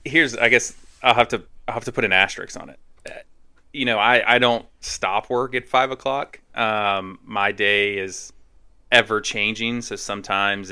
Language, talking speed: English, 180 wpm